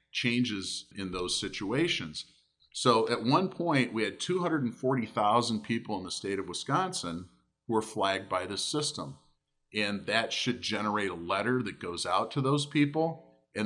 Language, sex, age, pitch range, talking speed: English, male, 40-59, 95-125 Hz, 160 wpm